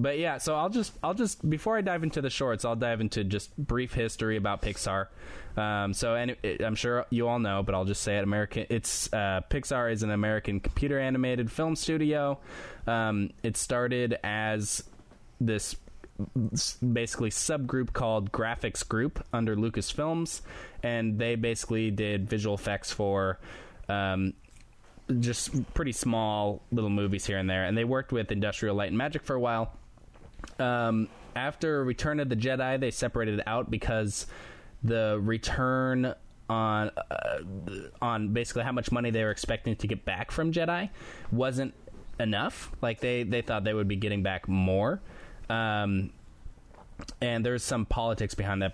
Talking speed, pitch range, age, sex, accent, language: 165 wpm, 100-125 Hz, 10-29, male, American, English